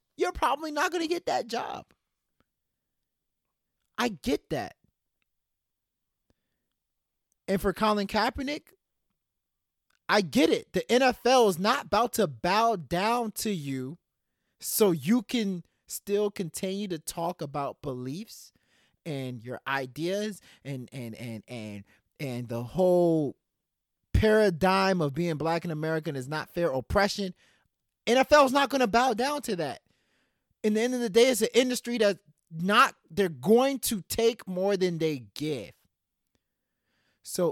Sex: male